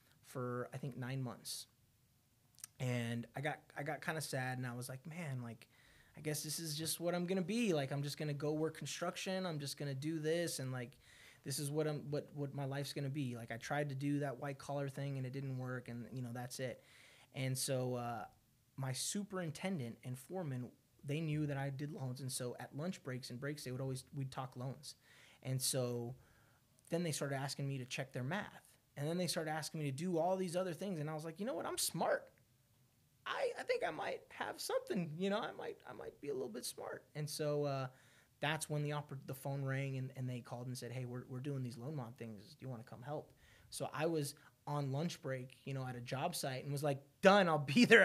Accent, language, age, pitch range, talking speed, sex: American, English, 20-39, 125-150 Hz, 240 wpm, male